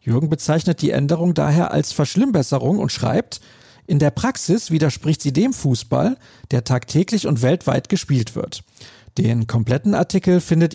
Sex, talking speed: male, 145 wpm